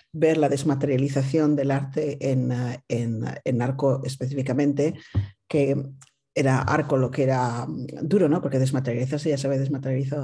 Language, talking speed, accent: Spanish, 130 wpm, Spanish